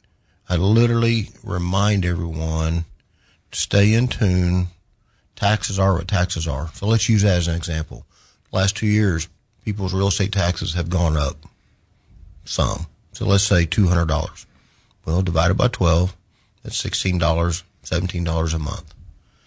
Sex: male